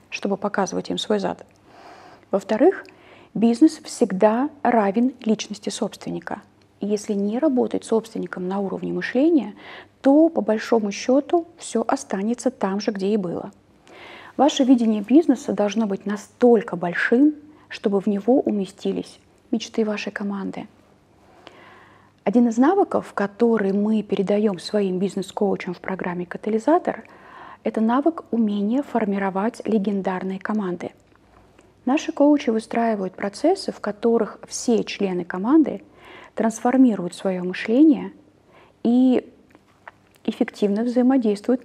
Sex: female